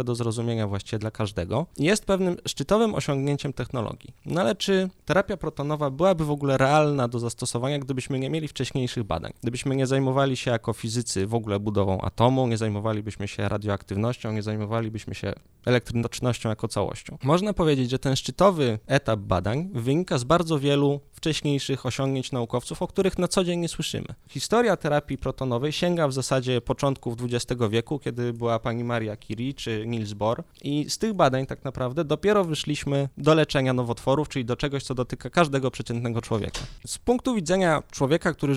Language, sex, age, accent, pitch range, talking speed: Polish, male, 20-39, native, 115-150 Hz, 170 wpm